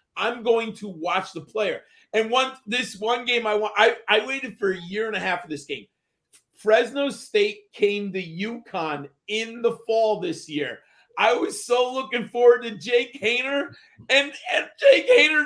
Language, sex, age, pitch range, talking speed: English, male, 40-59, 180-235 Hz, 185 wpm